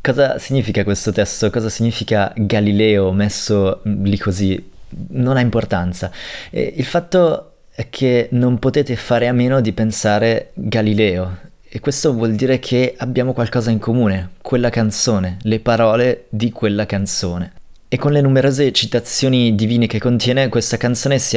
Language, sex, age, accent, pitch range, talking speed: Italian, male, 20-39, native, 105-125 Hz, 145 wpm